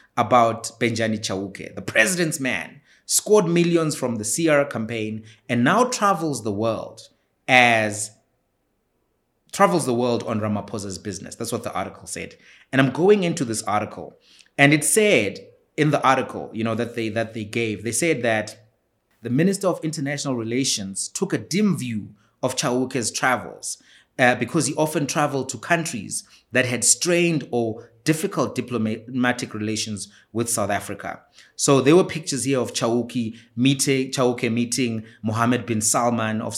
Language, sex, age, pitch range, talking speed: English, male, 30-49, 115-155 Hz, 155 wpm